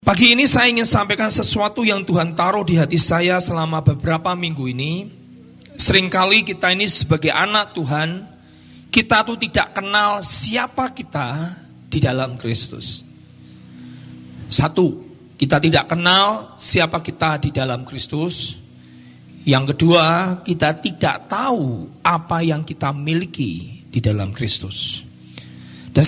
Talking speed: 120 wpm